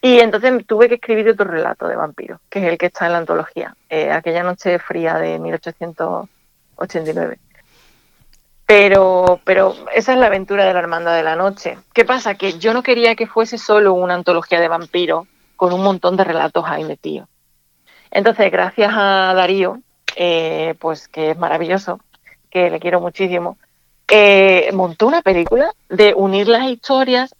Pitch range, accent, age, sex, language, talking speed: 180-215 Hz, Spanish, 40-59, female, Spanish, 165 wpm